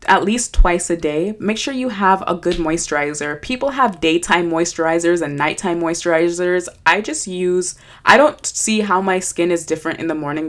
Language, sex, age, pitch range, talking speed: English, female, 20-39, 155-190 Hz, 190 wpm